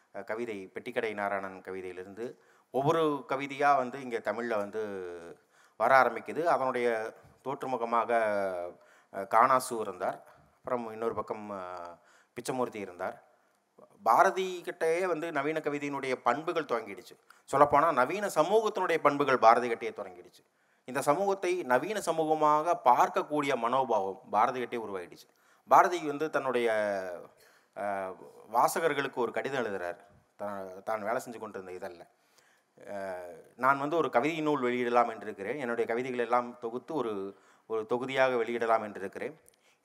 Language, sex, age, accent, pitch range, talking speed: Tamil, male, 30-49, native, 110-150 Hz, 105 wpm